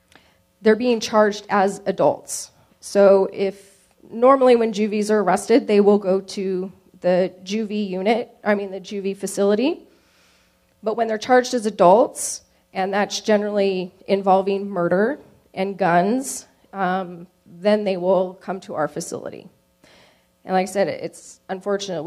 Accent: American